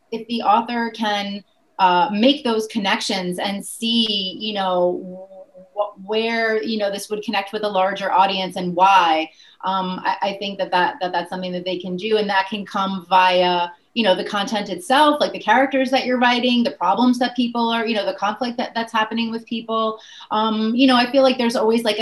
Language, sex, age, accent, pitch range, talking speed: English, female, 30-49, American, 190-240 Hz, 200 wpm